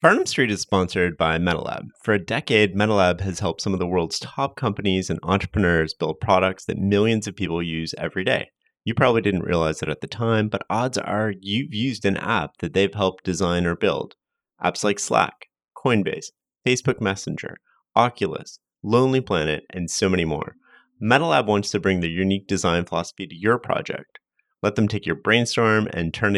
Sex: male